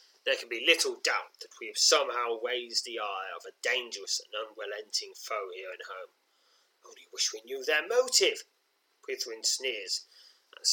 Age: 30-49